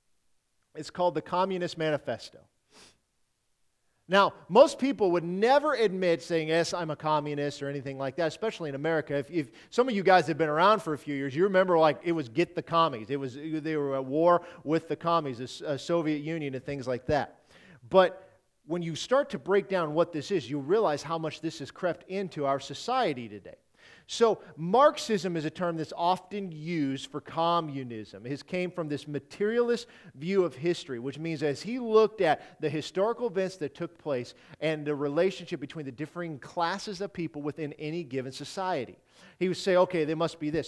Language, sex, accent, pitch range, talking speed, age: English, male, American, 145-185 Hz, 195 wpm, 40-59